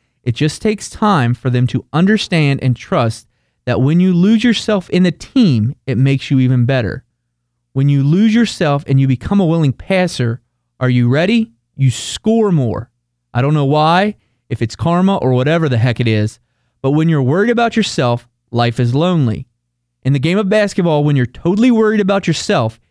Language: English